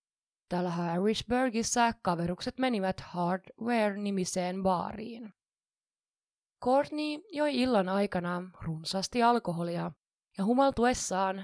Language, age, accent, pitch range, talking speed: Finnish, 20-39, native, 180-230 Hz, 75 wpm